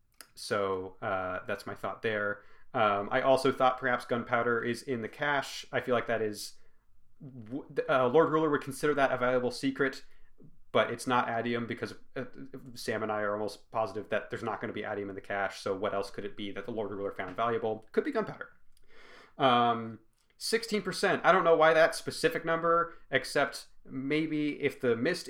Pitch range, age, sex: 110-145 Hz, 30-49, male